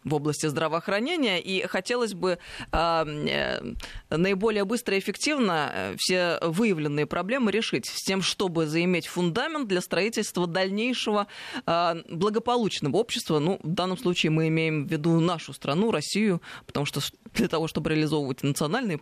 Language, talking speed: Russian, 140 wpm